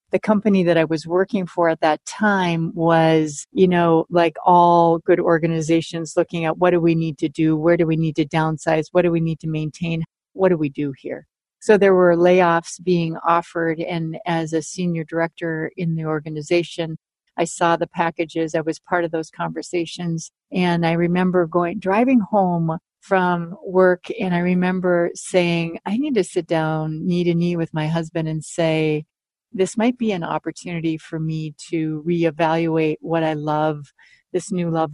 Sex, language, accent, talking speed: female, English, American, 180 wpm